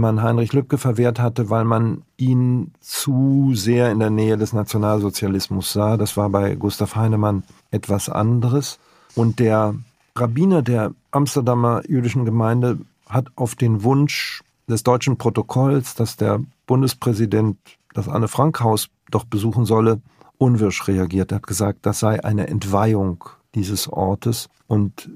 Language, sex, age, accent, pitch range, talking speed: German, male, 50-69, German, 105-125 Hz, 140 wpm